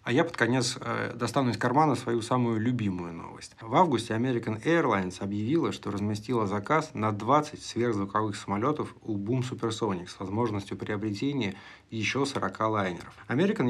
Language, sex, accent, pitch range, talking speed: Russian, male, native, 105-140 Hz, 145 wpm